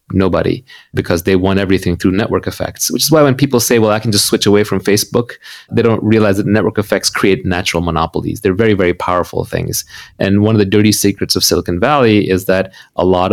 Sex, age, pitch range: male, 30-49, 90-105 Hz